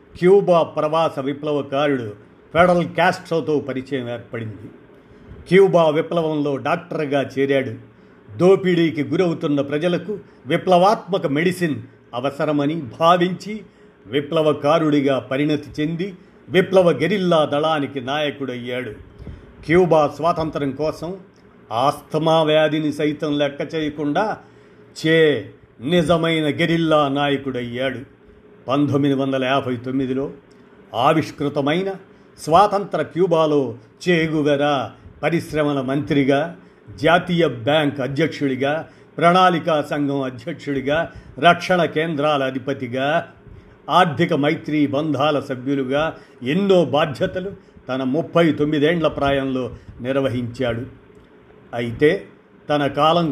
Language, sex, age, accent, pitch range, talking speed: Telugu, male, 50-69, native, 140-165 Hz, 80 wpm